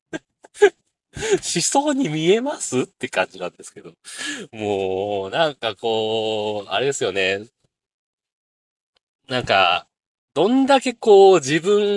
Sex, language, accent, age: male, Japanese, native, 40-59